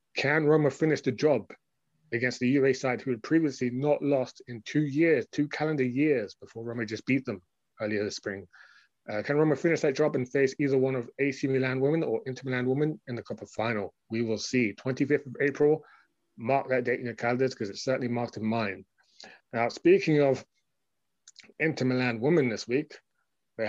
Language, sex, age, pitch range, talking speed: English, male, 30-49, 115-140 Hz, 195 wpm